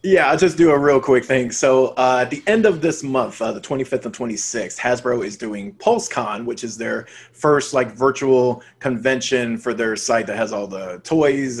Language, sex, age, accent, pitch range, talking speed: English, male, 30-49, American, 120-150 Hz, 205 wpm